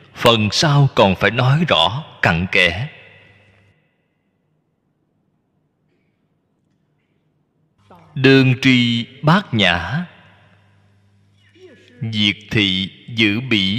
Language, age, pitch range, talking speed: Vietnamese, 20-39, 105-155 Hz, 70 wpm